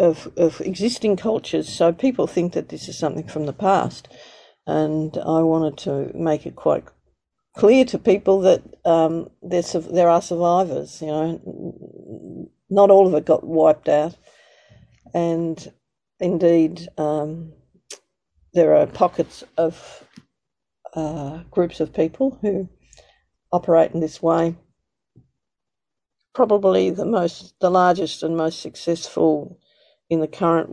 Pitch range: 160-185 Hz